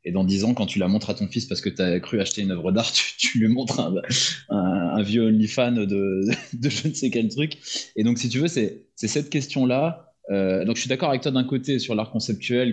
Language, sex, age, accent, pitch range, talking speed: French, male, 20-39, French, 100-135 Hz, 270 wpm